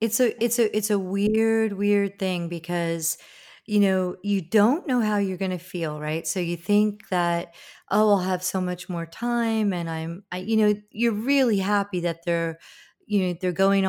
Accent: American